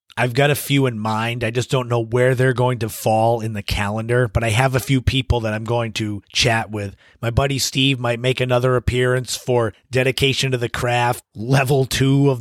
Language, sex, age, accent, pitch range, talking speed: English, male, 30-49, American, 115-135 Hz, 220 wpm